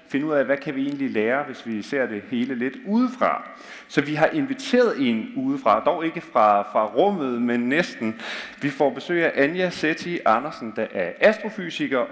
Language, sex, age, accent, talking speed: Danish, male, 30-49, native, 190 wpm